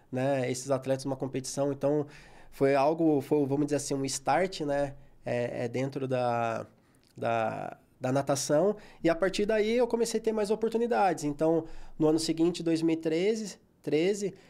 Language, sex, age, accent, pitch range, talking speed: Portuguese, male, 20-39, Brazilian, 140-165 Hz, 155 wpm